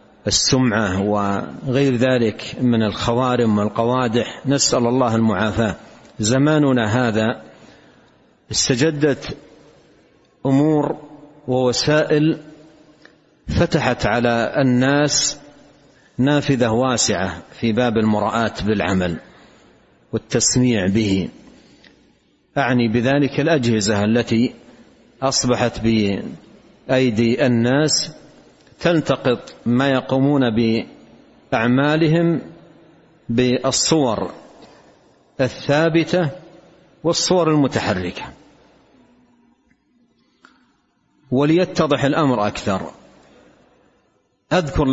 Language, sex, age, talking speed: Arabic, male, 50-69, 60 wpm